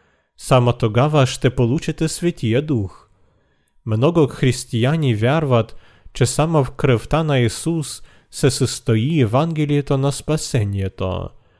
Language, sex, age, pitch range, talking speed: Bulgarian, male, 40-59, 115-145 Hz, 105 wpm